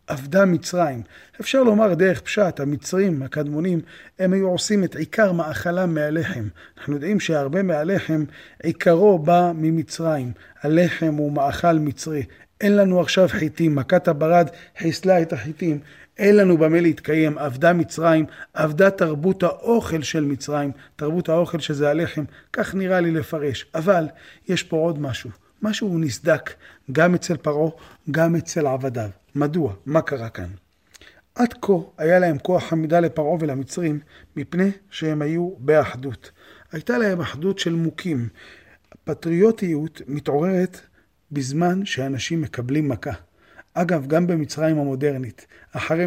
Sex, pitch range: male, 145-175 Hz